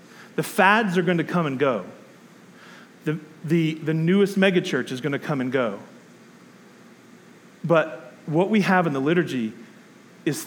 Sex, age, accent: male, 40-59, American